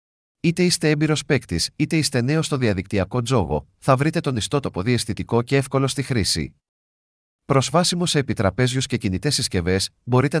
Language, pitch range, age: Greek, 105-140 Hz, 40-59